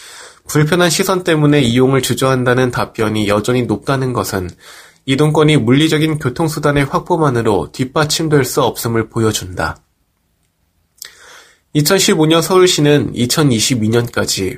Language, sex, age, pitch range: Korean, male, 20-39, 115-165 Hz